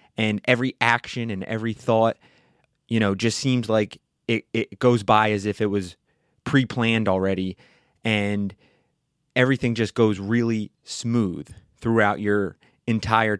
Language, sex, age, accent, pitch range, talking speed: English, male, 30-49, American, 105-125 Hz, 135 wpm